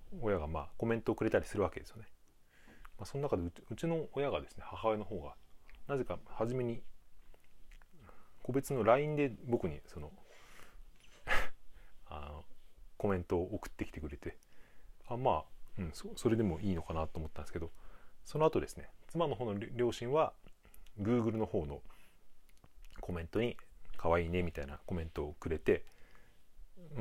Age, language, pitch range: 30-49, Japanese, 85-120 Hz